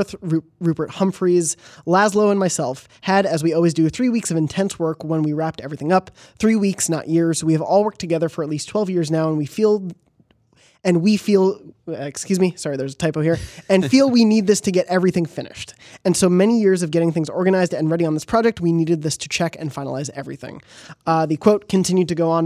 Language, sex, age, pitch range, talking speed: English, male, 20-39, 155-190 Hz, 225 wpm